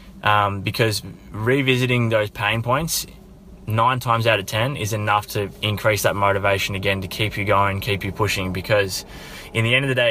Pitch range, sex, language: 100-115 Hz, male, English